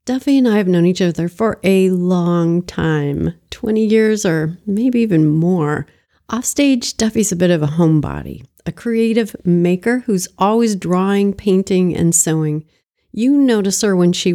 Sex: female